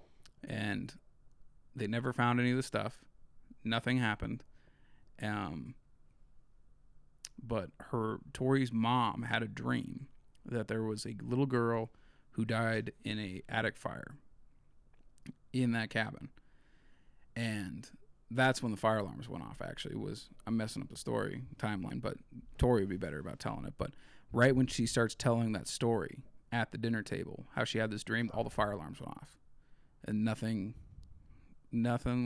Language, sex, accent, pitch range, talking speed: English, male, American, 110-125 Hz, 155 wpm